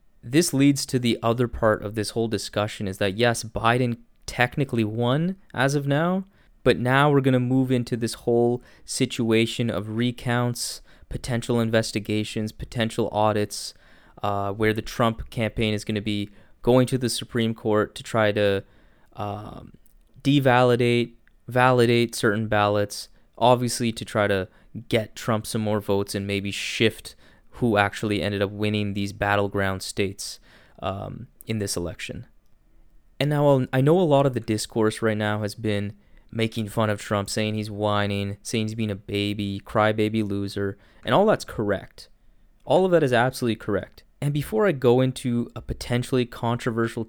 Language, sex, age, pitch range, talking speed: English, male, 20-39, 105-125 Hz, 160 wpm